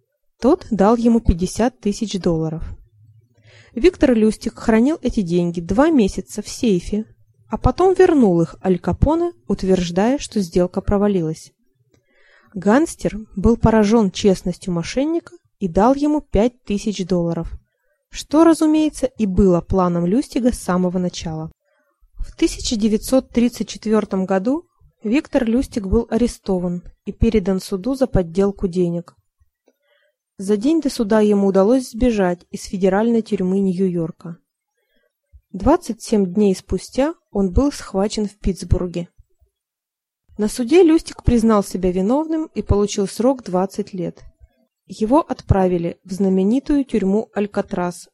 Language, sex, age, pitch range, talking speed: Russian, female, 20-39, 185-250 Hz, 115 wpm